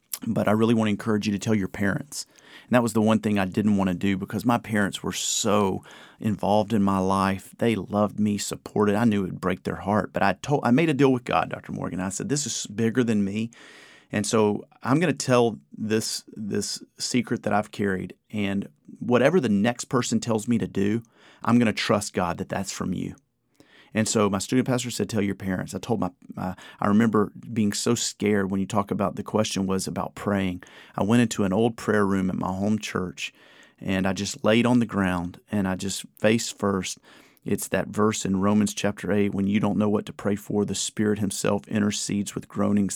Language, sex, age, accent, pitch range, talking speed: English, male, 40-59, American, 100-115 Hz, 225 wpm